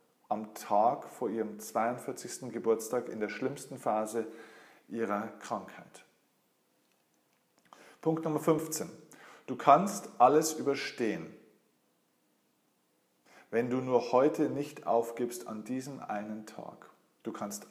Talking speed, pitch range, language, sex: 105 wpm, 115-150 Hz, German, male